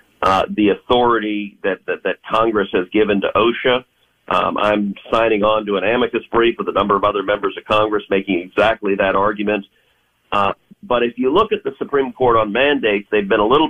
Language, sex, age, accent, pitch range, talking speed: English, male, 50-69, American, 100-115 Hz, 200 wpm